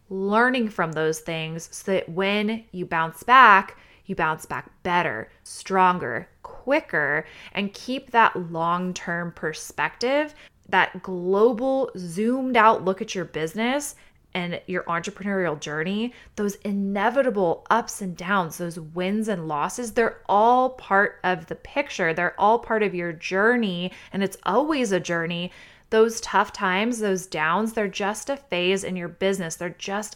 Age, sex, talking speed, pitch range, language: 20-39, female, 145 wpm, 180-230 Hz, English